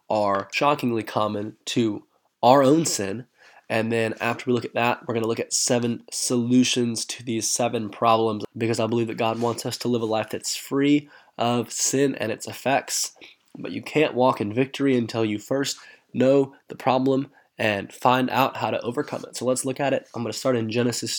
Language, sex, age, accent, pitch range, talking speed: English, male, 20-39, American, 115-130 Hz, 200 wpm